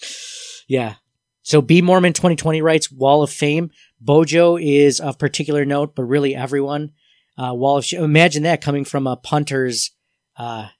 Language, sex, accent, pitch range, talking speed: English, male, American, 130-160 Hz, 160 wpm